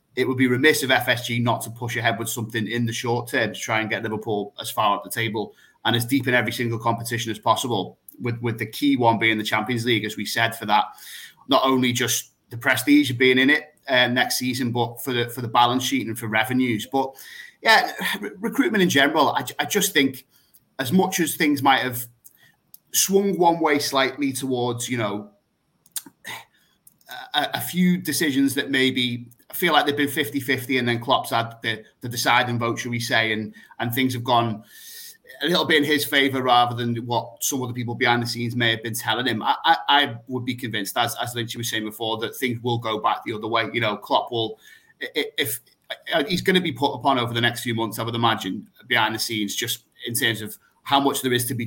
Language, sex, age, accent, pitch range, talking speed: English, male, 30-49, British, 115-140 Hz, 230 wpm